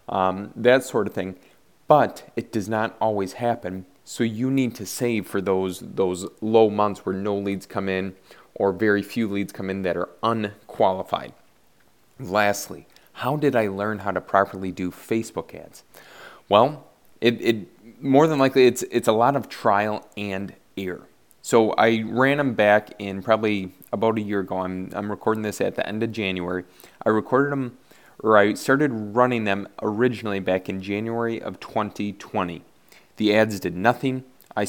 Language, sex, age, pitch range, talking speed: English, male, 20-39, 100-115 Hz, 170 wpm